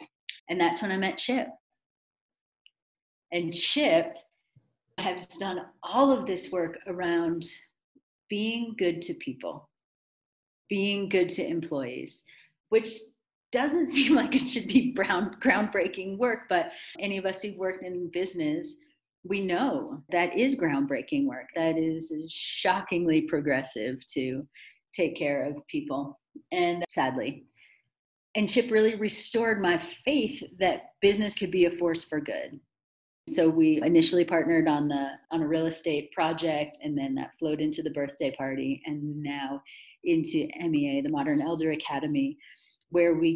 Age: 40-59